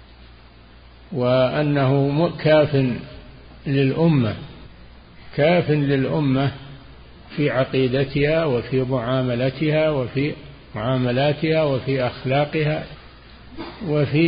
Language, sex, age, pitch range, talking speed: Arabic, male, 50-69, 115-145 Hz, 60 wpm